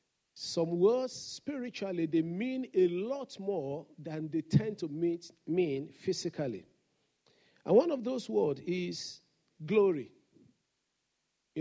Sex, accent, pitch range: male, Nigerian, 165-230 Hz